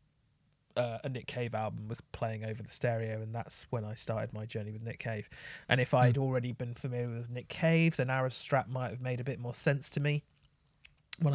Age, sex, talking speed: 30-49, male, 220 wpm